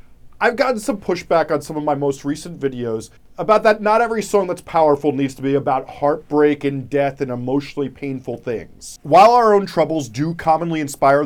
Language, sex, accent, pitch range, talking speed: English, male, American, 140-195 Hz, 190 wpm